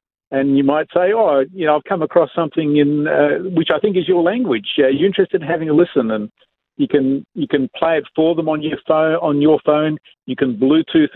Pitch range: 125-160 Hz